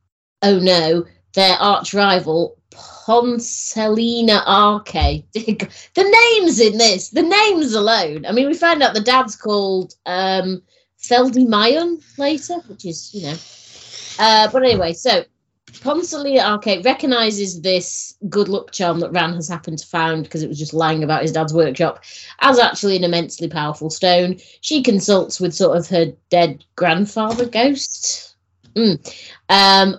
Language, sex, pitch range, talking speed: English, female, 165-225 Hz, 140 wpm